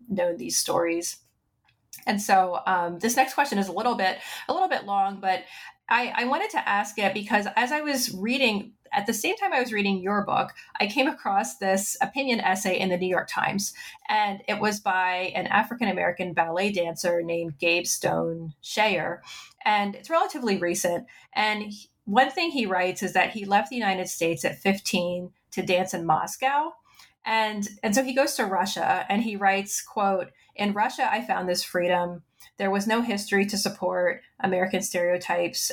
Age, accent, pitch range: 30-49, American, 180-225 Hz